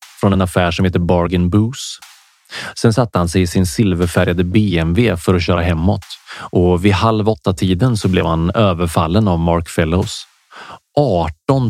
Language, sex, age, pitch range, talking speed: Swedish, male, 30-49, 90-110 Hz, 165 wpm